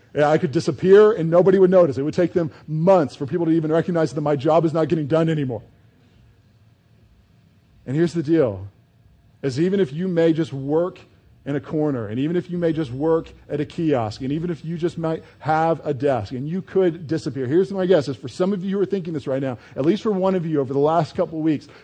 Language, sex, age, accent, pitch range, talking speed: English, male, 40-59, American, 140-180 Hz, 240 wpm